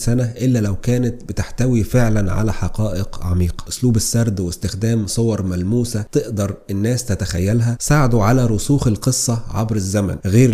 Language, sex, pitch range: Arabic, male, 100-120 Hz